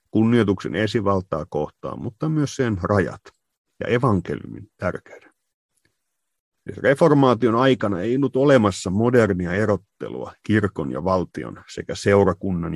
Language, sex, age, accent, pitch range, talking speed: Finnish, male, 30-49, native, 95-120 Hz, 105 wpm